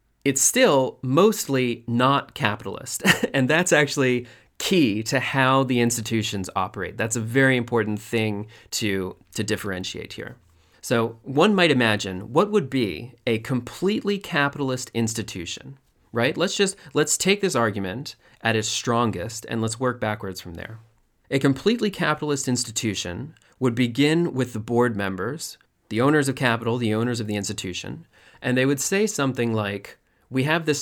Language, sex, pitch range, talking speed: English, male, 110-135 Hz, 150 wpm